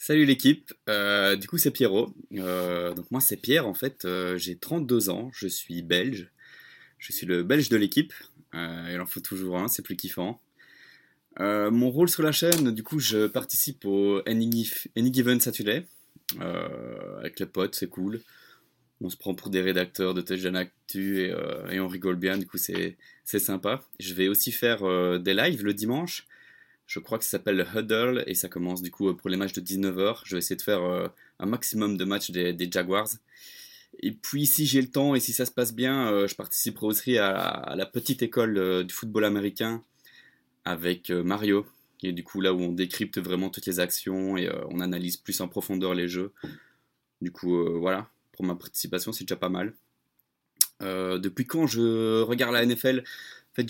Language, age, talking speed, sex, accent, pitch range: French, 20-39, 205 wpm, male, French, 95-120 Hz